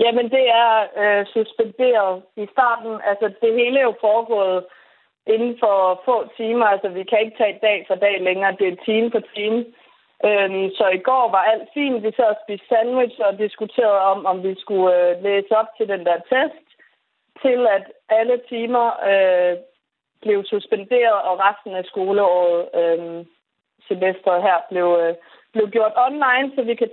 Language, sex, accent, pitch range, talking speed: Danish, female, native, 190-225 Hz, 170 wpm